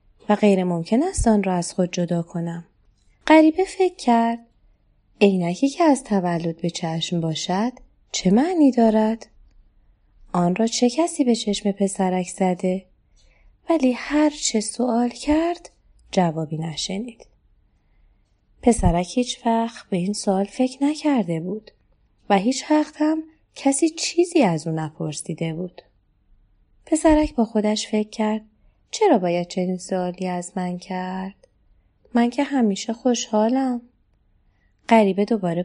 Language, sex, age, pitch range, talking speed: Persian, female, 20-39, 175-245 Hz, 125 wpm